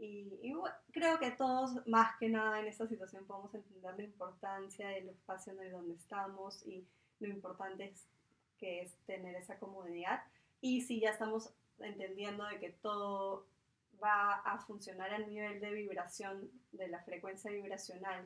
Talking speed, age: 160 wpm, 20-39